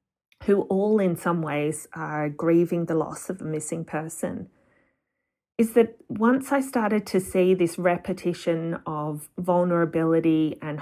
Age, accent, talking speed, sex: 30-49, Australian, 140 wpm, female